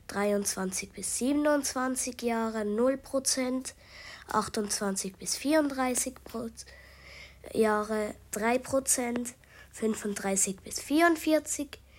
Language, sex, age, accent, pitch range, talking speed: German, female, 20-39, German, 200-245 Hz, 80 wpm